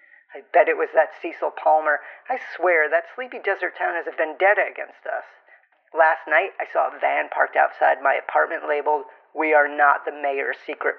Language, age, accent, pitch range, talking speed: English, 40-59, American, 160-235 Hz, 190 wpm